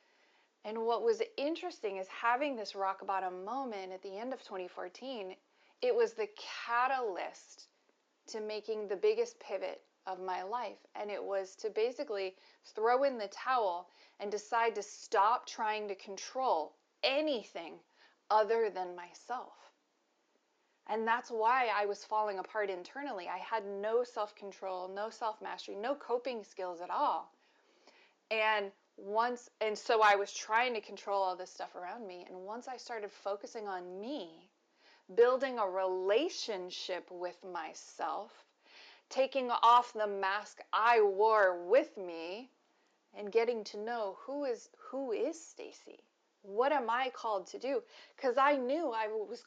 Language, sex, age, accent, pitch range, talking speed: English, female, 30-49, American, 200-265 Hz, 150 wpm